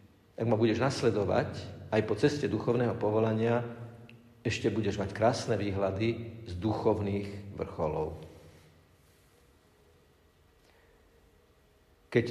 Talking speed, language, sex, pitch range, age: 90 wpm, Slovak, male, 100-140 Hz, 50-69